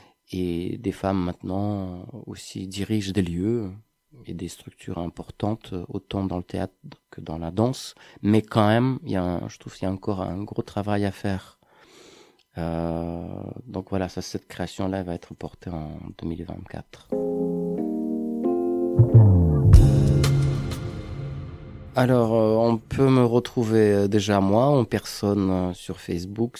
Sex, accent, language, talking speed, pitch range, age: male, French, French, 135 wpm, 90-110 Hz, 30-49